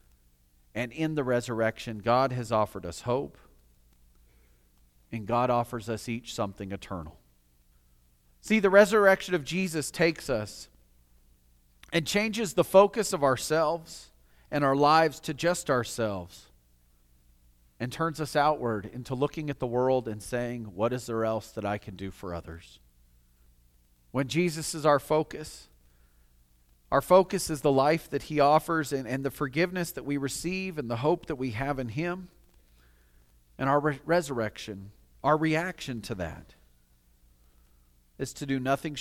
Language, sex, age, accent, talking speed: English, male, 40-59, American, 145 wpm